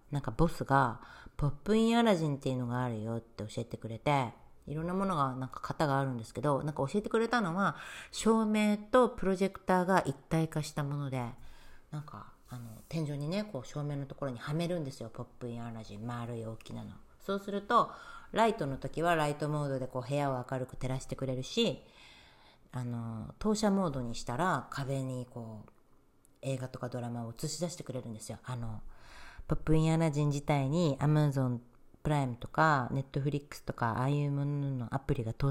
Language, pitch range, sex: Japanese, 120-160 Hz, female